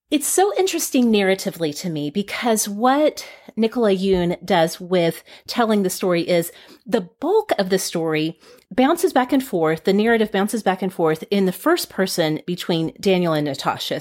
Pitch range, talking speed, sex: 170-235 Hz, 165 wpm, female